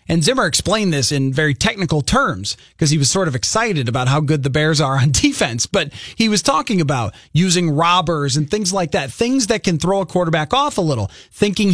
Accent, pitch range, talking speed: American, 155-205 Hz, 220 wpm